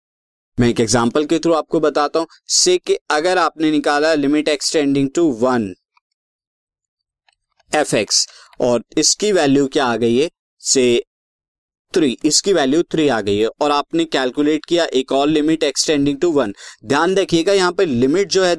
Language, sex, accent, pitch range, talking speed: Hindi, male, native, 130-190 Hz, 165 wpm